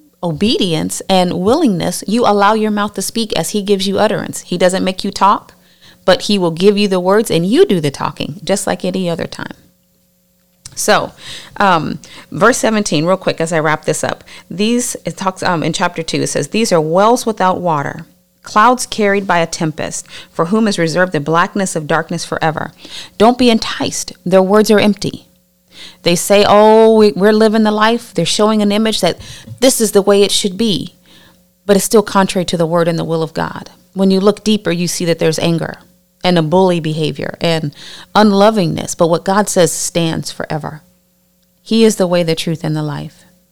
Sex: female